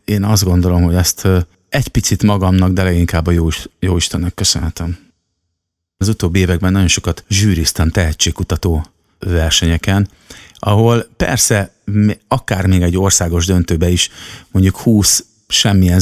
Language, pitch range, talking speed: Hungarian, 85-100 Hz, 125 wpm